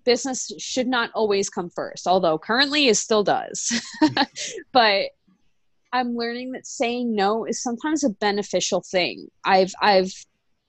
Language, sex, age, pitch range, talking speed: English, female, 20-39, 185-235 Hz, 135 wpm